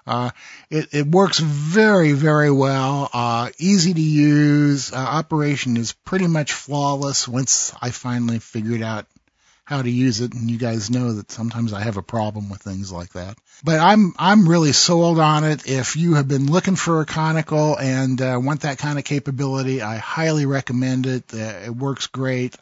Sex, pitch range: male, 120-155 Hz